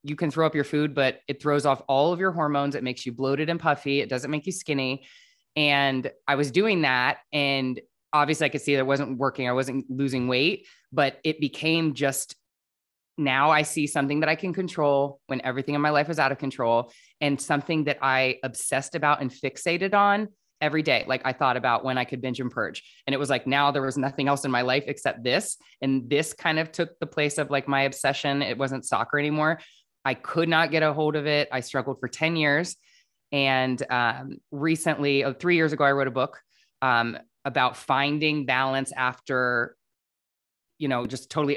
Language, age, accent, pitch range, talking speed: English, 20-39, American, 130-150 Hz, 210 wpm